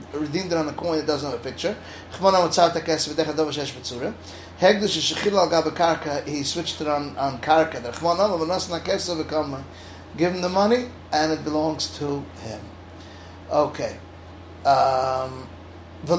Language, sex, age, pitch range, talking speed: English, male, 30-49, 135-170 Hz, 100 wpm